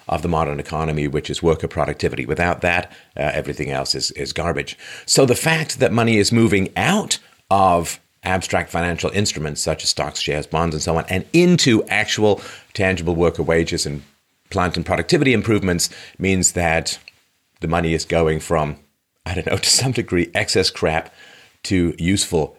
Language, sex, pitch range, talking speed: English, male, 80-105 Hz, 170 wpm